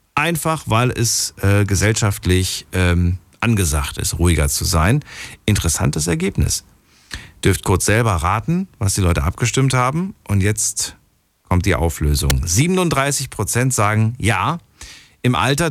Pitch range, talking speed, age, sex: 90-125 Hz, 125 wpm, 50-69, male